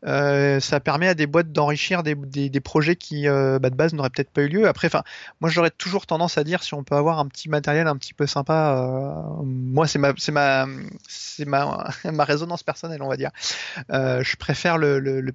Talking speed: 230 wpm